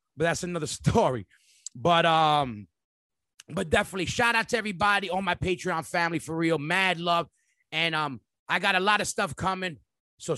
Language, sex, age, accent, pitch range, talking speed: English, male, 30-49, American, 155-190 Hz, 175 wpm